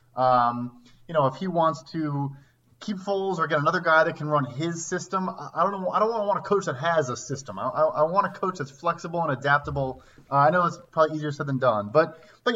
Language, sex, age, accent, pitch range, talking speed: English, male, 20-39, American, 145-190 Hz, 260 wpm